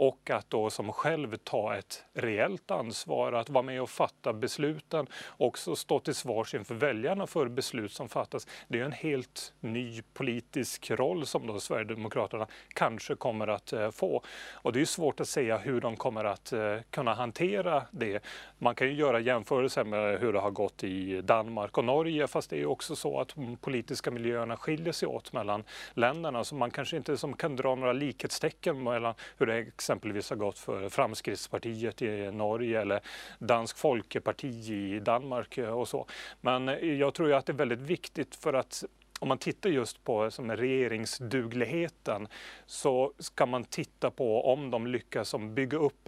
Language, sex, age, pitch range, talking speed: English, male, 30-49, 115-145 Hz, 175 wpm